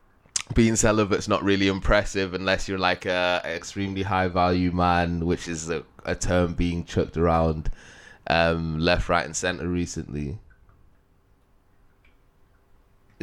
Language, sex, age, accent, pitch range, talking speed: English, male, 20-39, British, 95-130 Hz, 125 wpm